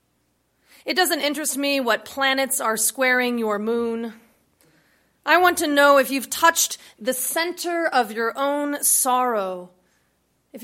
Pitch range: 220-295 Hz